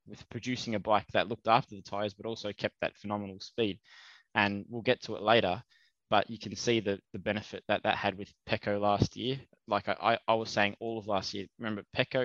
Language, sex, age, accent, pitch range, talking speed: English, male, 20-39, Australian, 105-115 Hz, 225 wpm